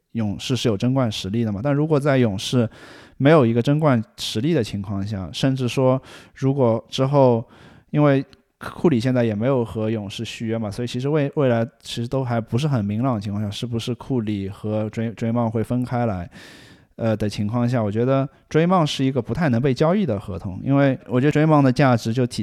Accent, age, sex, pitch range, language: native, 20-39, male, 105-125 Hz, Chinese